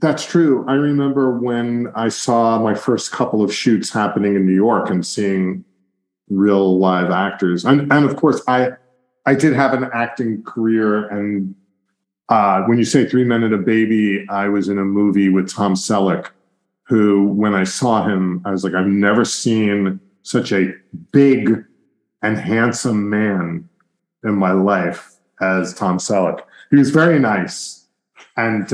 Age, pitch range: 40-59, 100-130 Hz